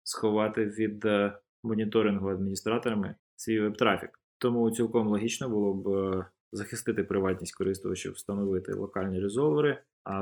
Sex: male